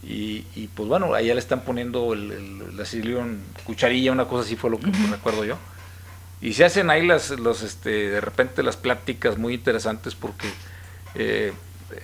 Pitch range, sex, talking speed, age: 90-115 Hz, male, 175 wpm, 50-69